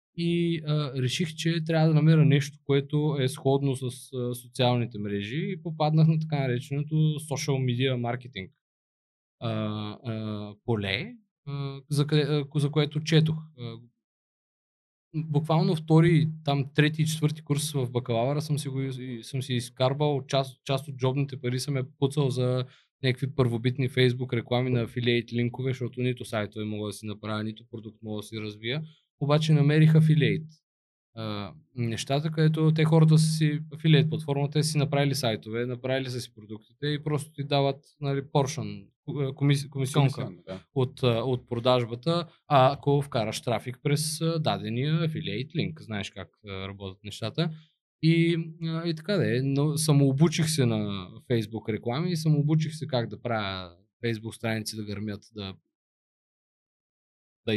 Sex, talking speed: male, 150 wpm